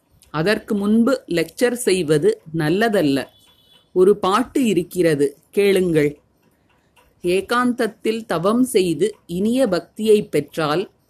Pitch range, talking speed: 165-225 Hz, 80 wpm